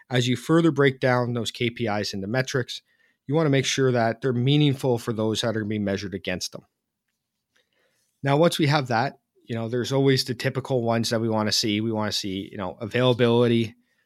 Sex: male